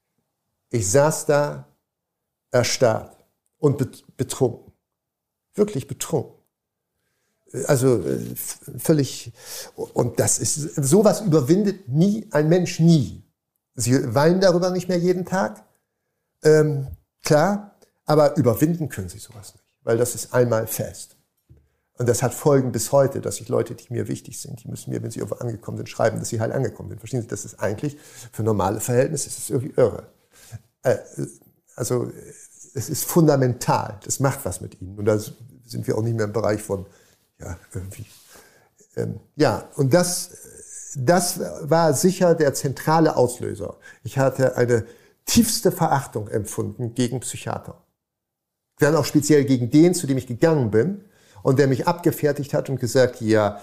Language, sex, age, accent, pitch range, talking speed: German, male, 60-79, German, 115-155 Hz, 150 wpm